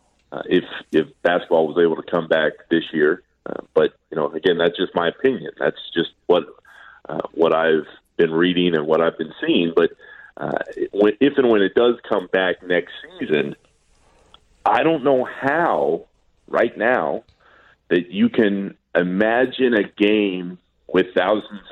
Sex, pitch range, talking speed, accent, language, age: male, 90-115 Hz, 160 wpm, American, English, 40-59